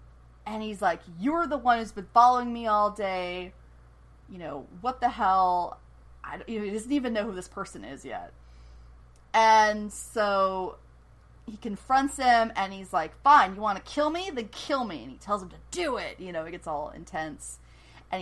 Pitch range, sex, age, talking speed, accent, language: 185-265 Hz, female, 30-49, 195 wpm, American, English